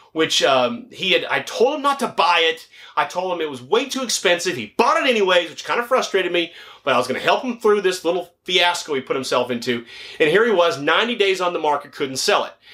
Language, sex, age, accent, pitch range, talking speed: English, male, 30-49, American, 135-190 Hz, 260 wpm